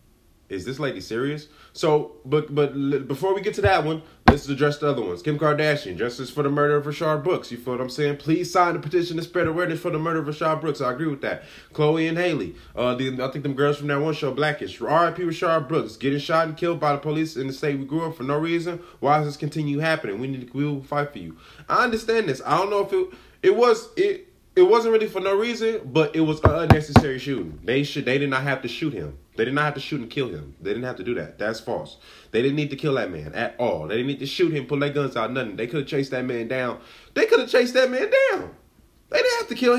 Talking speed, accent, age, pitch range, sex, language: 275 wpm, American, 20-39, 125-180 Hz, male, English